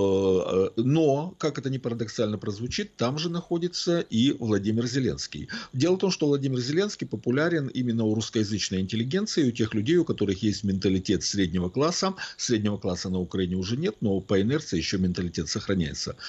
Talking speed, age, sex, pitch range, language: 160 wpm, 50-69, male, 90-125 Hz, Russian